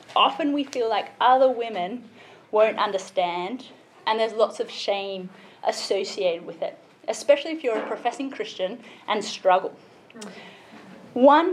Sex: female